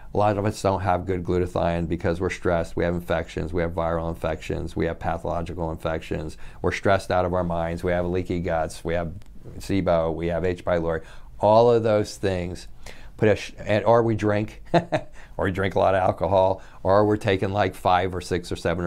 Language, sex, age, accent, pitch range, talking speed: English, male, 50-69, American, 85-105 Hz, 205 wpm